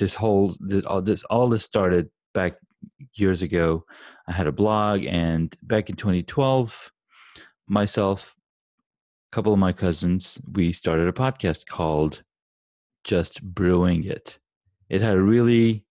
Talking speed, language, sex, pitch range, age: 130 wpm, English, male, 85-105 Hz, 30-49